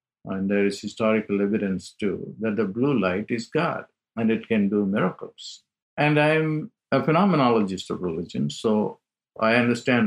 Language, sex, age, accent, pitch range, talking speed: English, male, 50-69, Indian, 95-125 Hz, 155 wpm